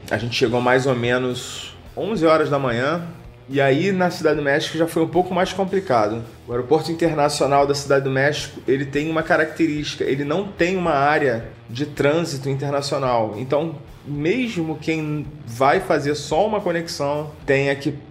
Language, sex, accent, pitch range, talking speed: Portuguese, male, Brazilian, 135-160 Hz, 170 wpm